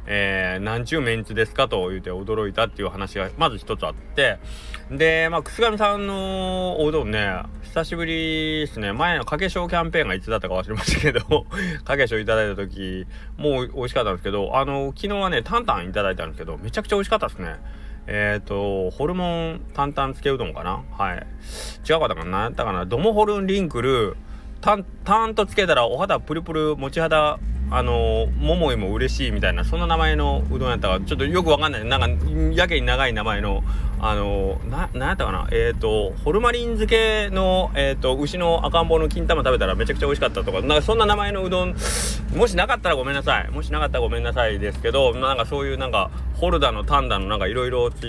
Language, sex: Japanese, male